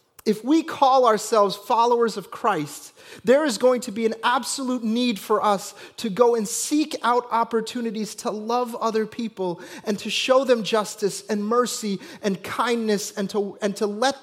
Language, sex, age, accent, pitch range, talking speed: English, male, 30-49, American, 190-225 Hz, 175 wpm